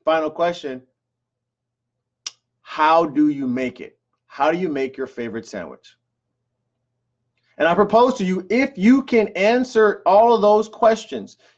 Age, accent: 30-49, American